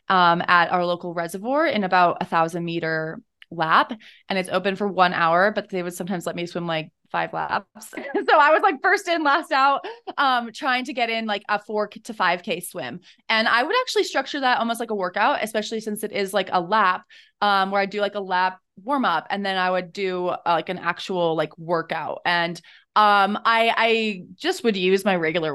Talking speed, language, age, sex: 215 wpm, English, 20-39, female